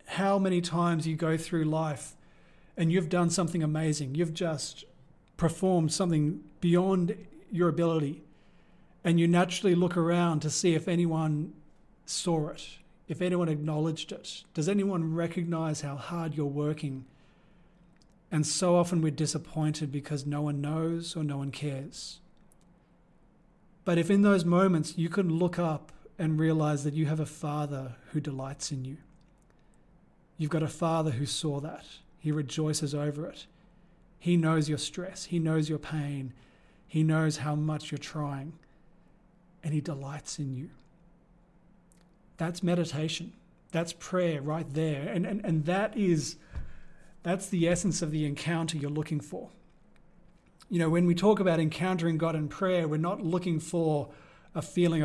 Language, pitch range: English, 155-175 Hz